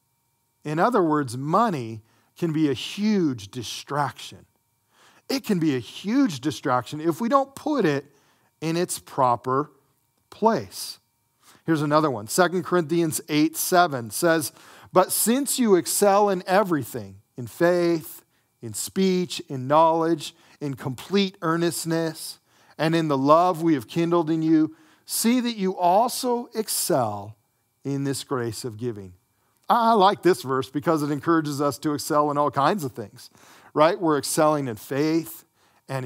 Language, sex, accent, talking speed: English, male, American, 145 wpm